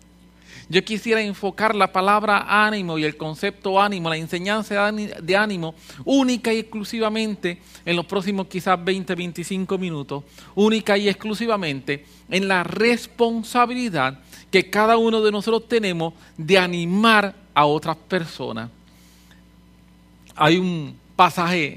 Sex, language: male, English